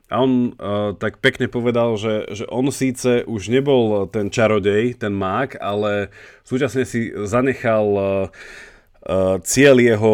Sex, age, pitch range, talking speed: male, 30-49, 100-120 Hz, 135 wpm